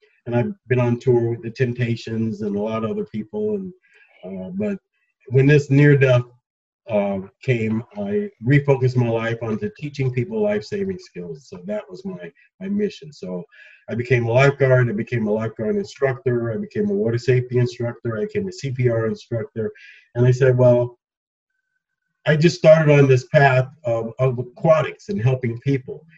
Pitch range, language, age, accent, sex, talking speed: 115-180 Hz, English, 50-69, American, male, 170 wpm